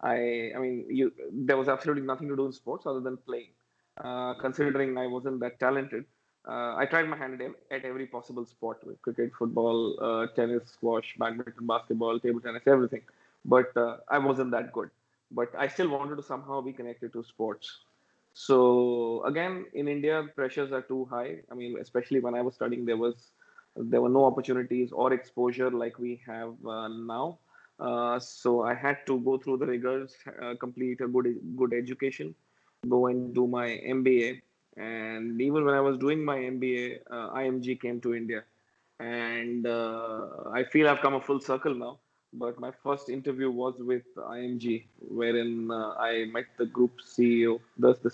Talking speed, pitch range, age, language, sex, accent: 180 wpm, 120-130 Hz, 20-39, English, male, Indian